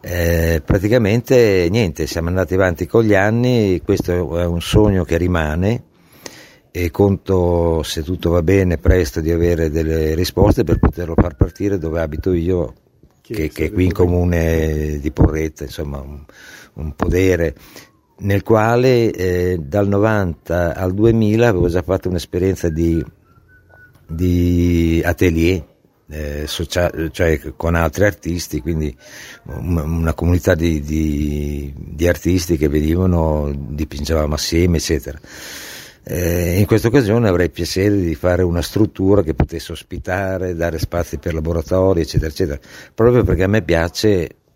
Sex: male